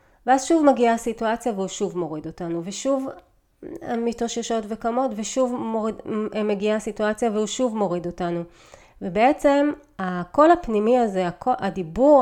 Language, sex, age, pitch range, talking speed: Hebrew, female, 30-49, 185-245 Hz, 125 wpm